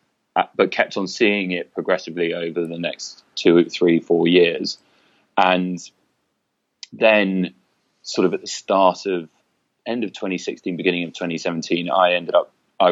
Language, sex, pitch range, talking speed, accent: English, male, 85-95 Hz, 150 wpm, British